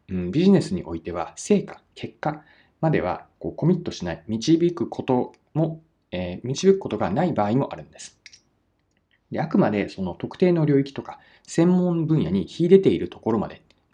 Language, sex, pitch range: Japanese, male, 95-165 Hz